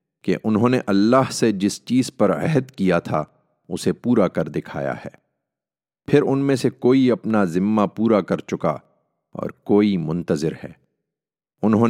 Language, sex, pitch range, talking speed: English, male, 80-110 Hz, 155 wpm